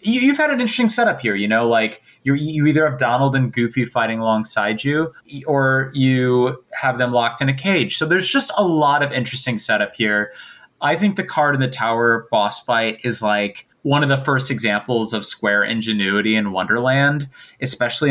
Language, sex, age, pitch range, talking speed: English, male, 20-39, 110-145 Hz, 190 wpm